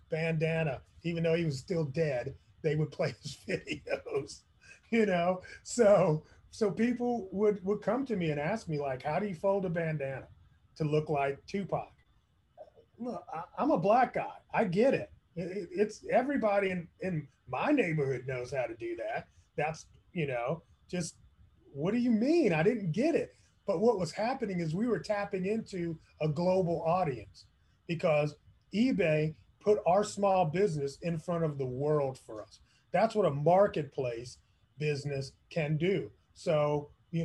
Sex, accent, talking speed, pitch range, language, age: male, American, 165 wpm, 140-200 Hz, English, 30-49